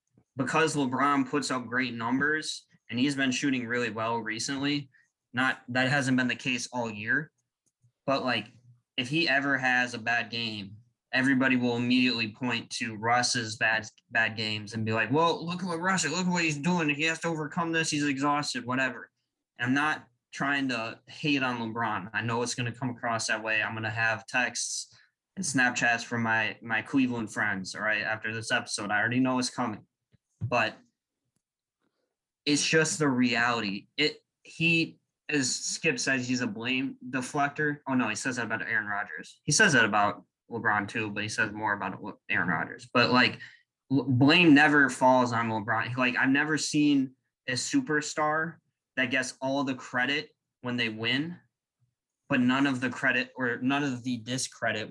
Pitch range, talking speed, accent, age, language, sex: 115-145 Hz, 180 wpm, American, 20-39, English, male